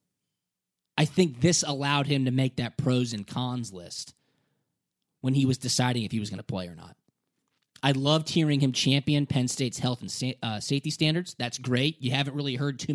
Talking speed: 195 wpm